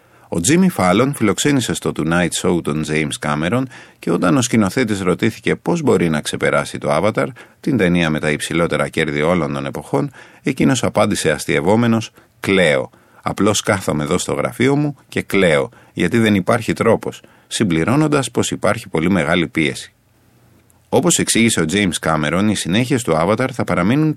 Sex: male